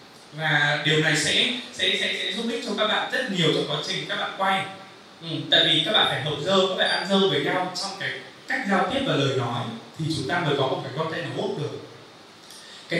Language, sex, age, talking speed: Vietnamese, male, 20-39, 245 wpm